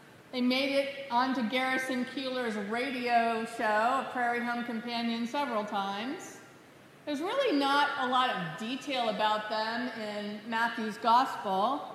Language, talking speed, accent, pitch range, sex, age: English, 130 wpm, American, 235-285 Hz, female, 50-69